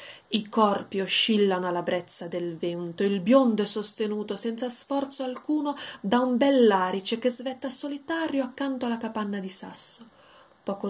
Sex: female